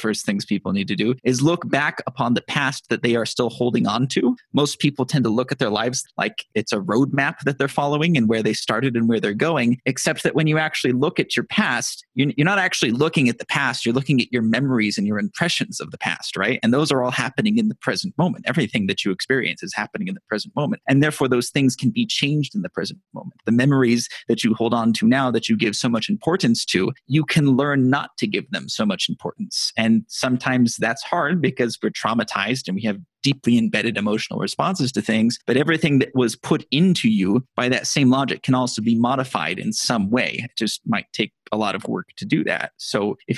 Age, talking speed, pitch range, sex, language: 30-49, 240 wpm, 115-150 Hz, male, English